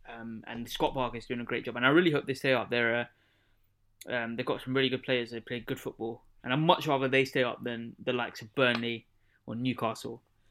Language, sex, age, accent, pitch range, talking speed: English, male, 20-39, British, 120-140 Hz, 250 wpm